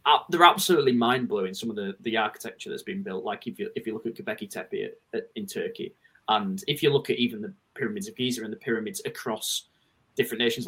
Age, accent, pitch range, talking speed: 20-39, British, 120-190 Hz, 220 wpm